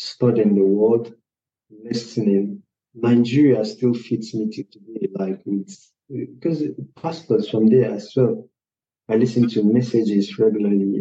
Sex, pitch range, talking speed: male, 100-120 Hz, 125 wpm